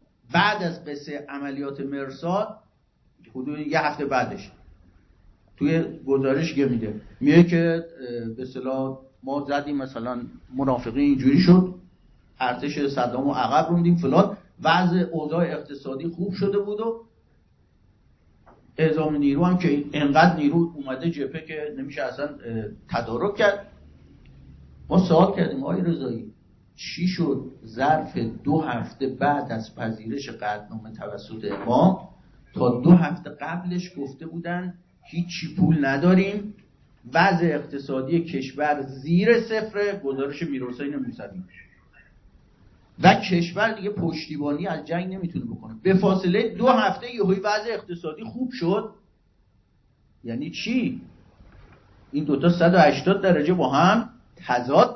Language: Persian